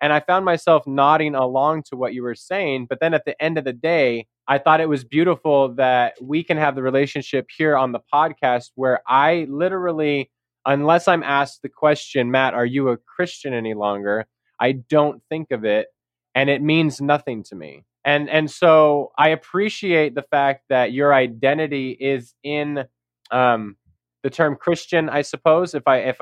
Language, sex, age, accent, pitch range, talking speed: English, male, 20-39, American, 125-155 Hz, 185 wpm